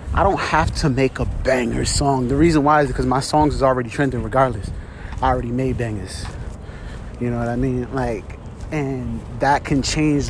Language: English